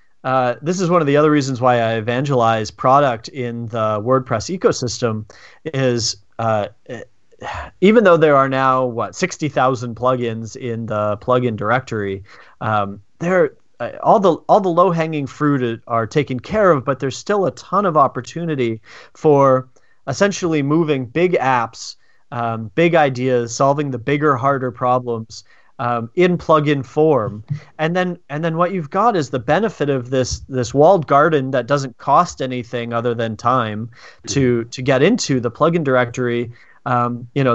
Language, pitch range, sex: English, 120-150 Hz, male